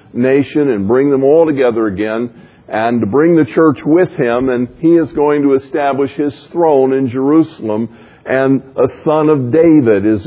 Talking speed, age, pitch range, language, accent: 175 wpm, 50-69, 120-145 Hz, English, American